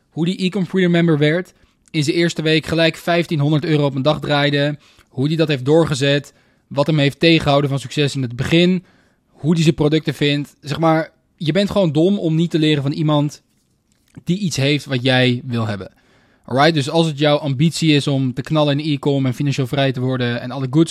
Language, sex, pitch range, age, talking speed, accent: Dutch, male, 125-155 Hz, 20-39, 210 wpm, Dutch